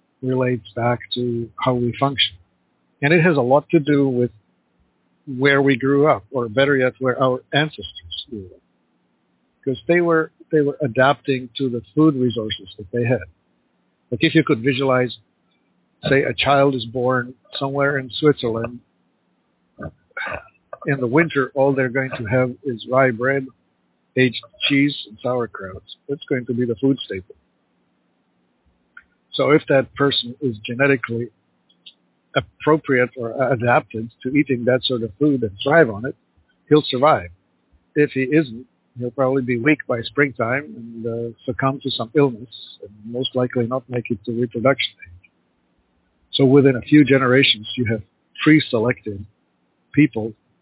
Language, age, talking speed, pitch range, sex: English, 50-69, 150 wpm, 115-140 Hz, male